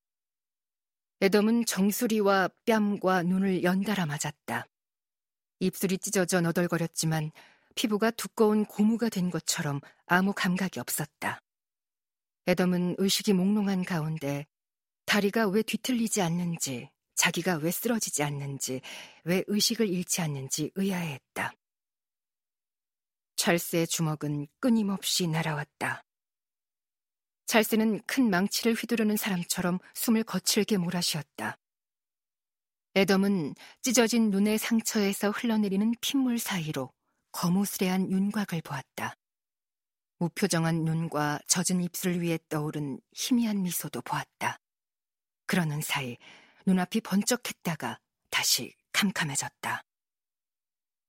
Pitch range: 160-205 Hz